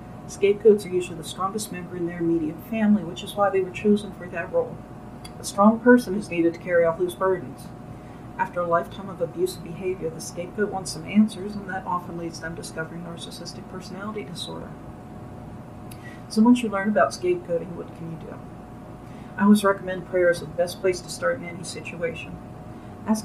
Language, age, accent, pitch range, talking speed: English, 40-59, American, 165-190 Hz, 190 wpm